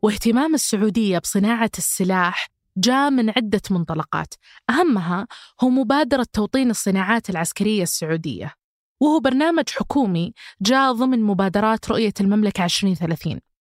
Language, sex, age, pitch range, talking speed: Arabic, female, 20-39, 195-245 Hz, 105 wpm